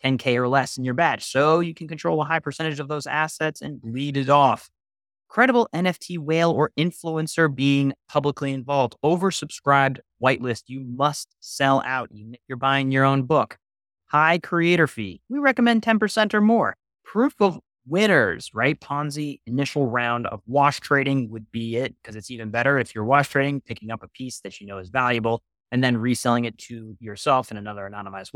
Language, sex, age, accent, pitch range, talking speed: English, male, 30-49, American, 115-160 Hz, 180 wpm